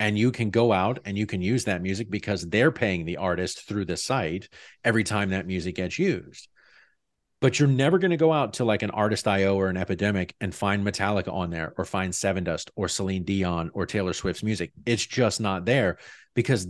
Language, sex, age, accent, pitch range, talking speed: English, male, 40-59, American, 95-115 Hz, 215 wpm